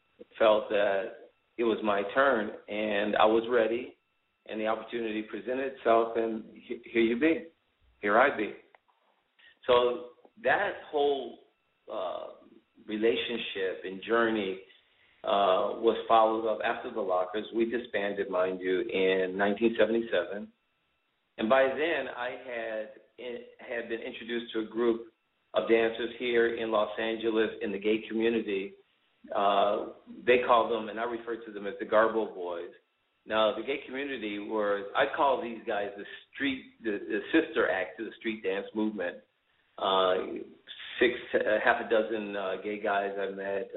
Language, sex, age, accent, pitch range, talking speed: English, male, 50-69, American, 100-115 Hz, 145 wpm